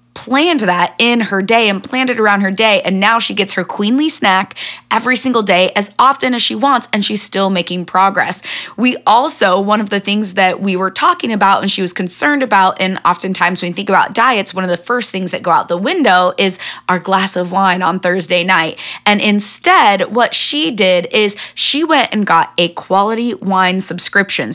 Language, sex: English, female